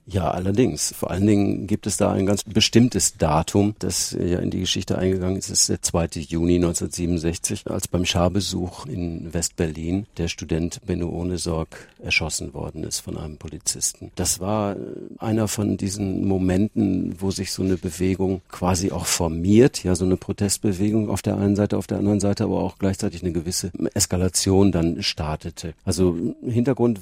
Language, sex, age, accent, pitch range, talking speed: German, male, 50-69, German, 85-100 Hz, 170 wpm